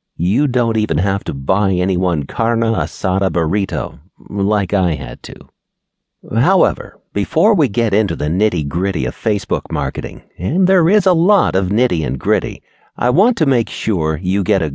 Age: 50-69